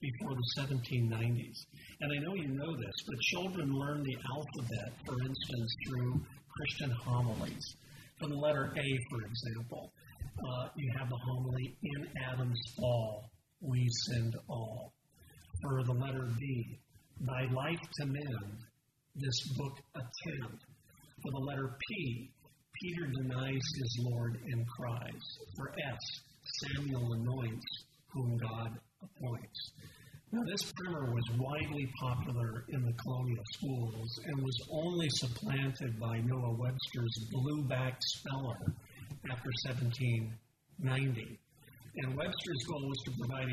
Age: 50-69